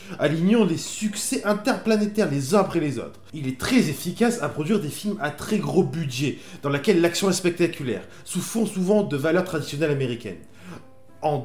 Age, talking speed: 20-39, 180 wpm